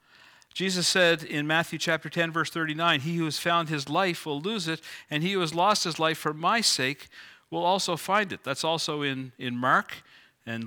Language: English